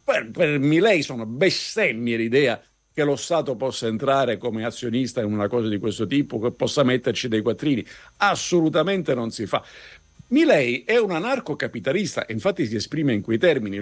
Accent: native